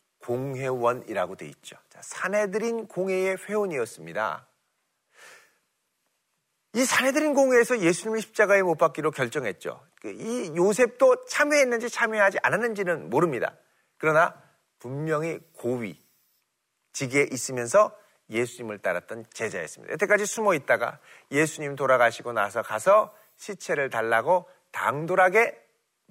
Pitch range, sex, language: 145-210 Hz, male, Korean